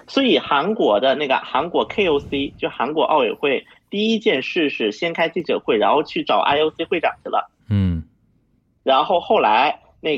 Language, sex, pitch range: Chinese, male, 170-245 Hz